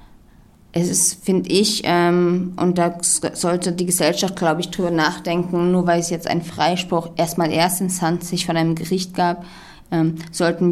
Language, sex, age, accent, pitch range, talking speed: German, female, 20-39, German, 165-185 Hz, 175 wpm